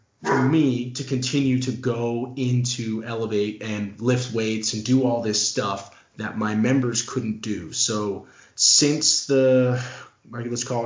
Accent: American